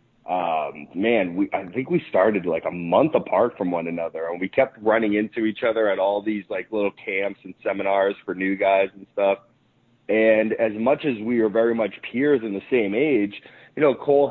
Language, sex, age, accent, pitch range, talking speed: English, male, 30-49, American, 105-130 Hz, 210 wpm